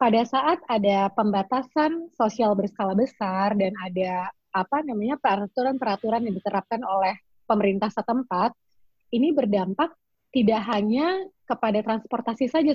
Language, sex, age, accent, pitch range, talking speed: Indonesian, female, 20-39, native, 205-260 Hz, 115 wpm